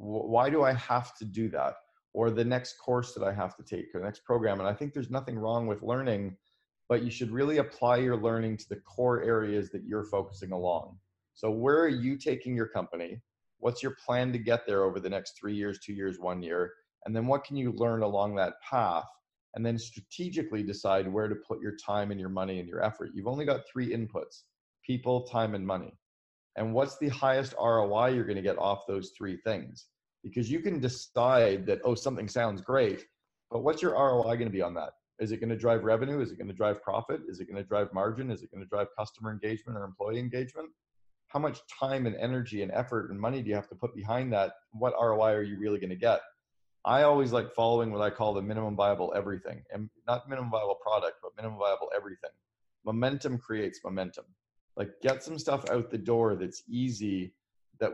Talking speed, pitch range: 215 wpm, 100-125 Hz